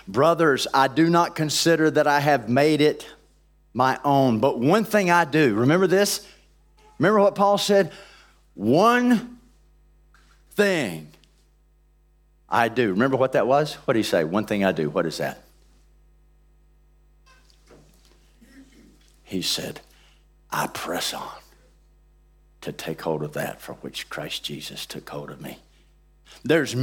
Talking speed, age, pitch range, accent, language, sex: 135 wpm, 40-59, 140-205 Hz, American, English, male